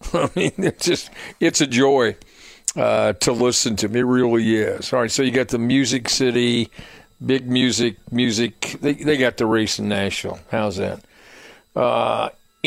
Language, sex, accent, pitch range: English, male, American, 115-140 Hz